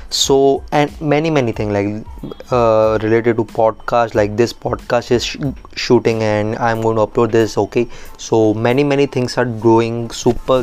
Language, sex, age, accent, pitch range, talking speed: English, male, 20-39, Indian, 110-120 Hz, 165 wpm